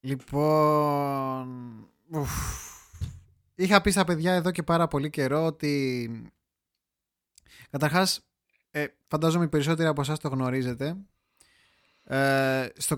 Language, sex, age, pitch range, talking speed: Greek, male, 20-39, 120-160 Hz, 95 wpm